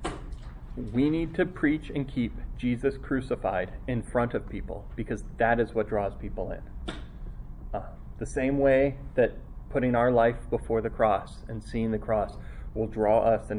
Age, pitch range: 30-49, 105-135 Hz